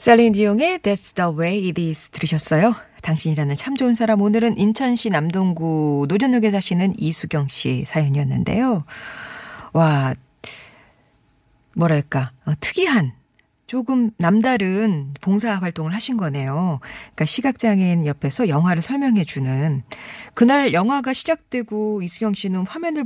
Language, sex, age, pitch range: Korean, female, 40-59, 160-240 Hz